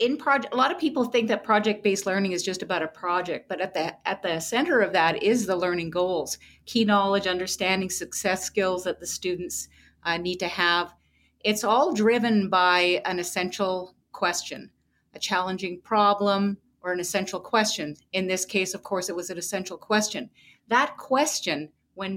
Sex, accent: female, American